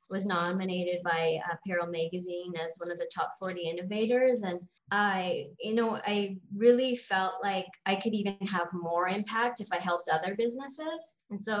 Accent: American